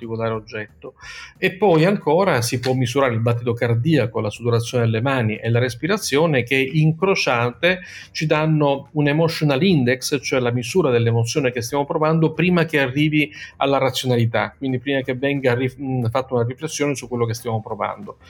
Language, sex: Italian, male